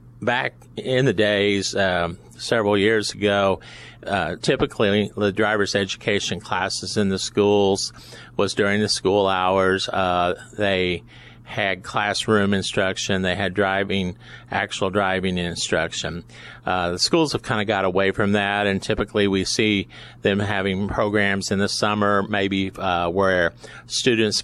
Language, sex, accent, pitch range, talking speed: English, male, American, 95-110 Hz, 140 wpm